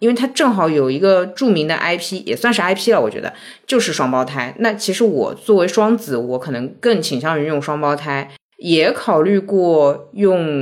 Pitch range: 145-215 Hz